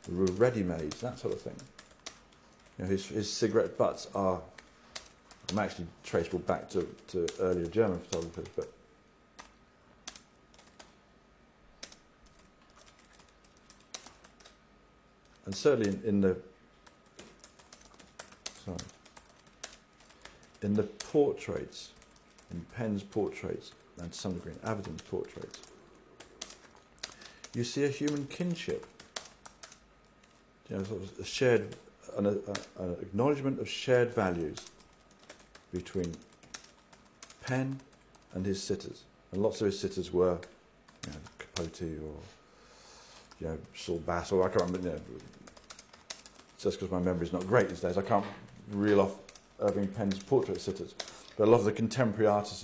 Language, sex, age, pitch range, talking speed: English, male, 50-69, 90-115 Hz, 115 wpm